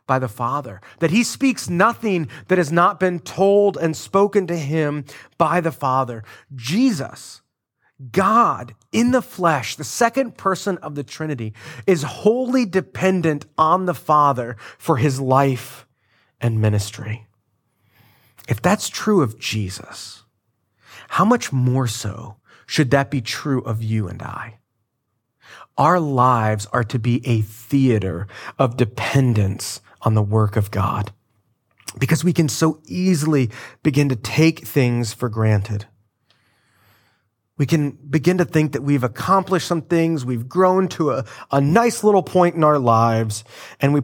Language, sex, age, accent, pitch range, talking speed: English, male, 30-49, American, 110-160 Hz, 145 wpm